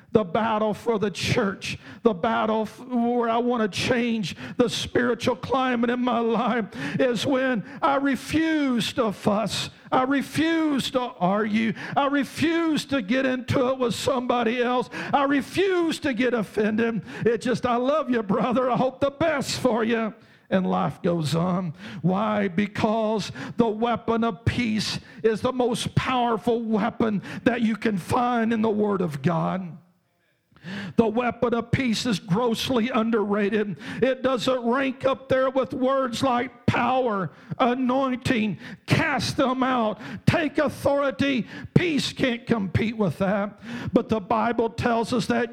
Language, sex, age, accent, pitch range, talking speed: English, male, 50-69, American, 215-255 Hz, 145 wpm